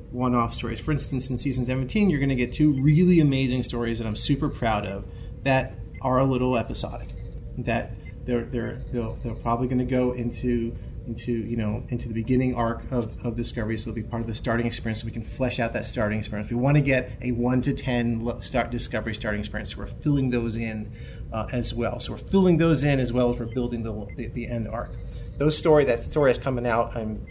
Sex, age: male, 30-49